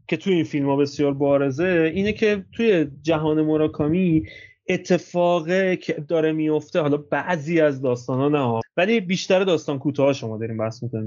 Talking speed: 155 wpm